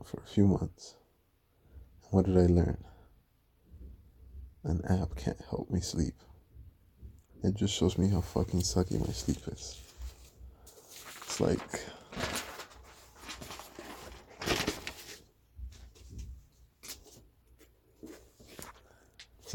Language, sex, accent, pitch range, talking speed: English, male, American, 85-105 Hz, 85 wpm